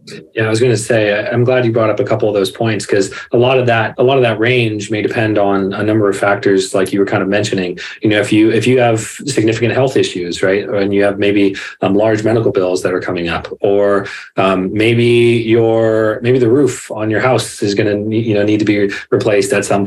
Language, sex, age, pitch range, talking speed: English, male, 30-49, 100-115 Hz, 250 wpm